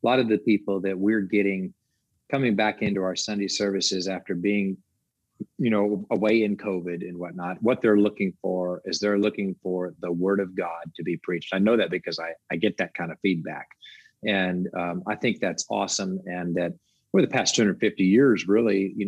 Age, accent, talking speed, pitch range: 40-59, American, 200 wpm, 95-115 Hz